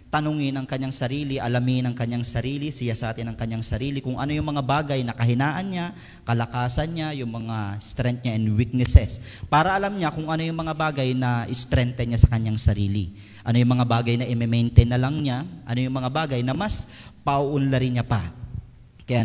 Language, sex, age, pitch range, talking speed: Filipino, male, 40-59, 115-155 Hz, 195 wpm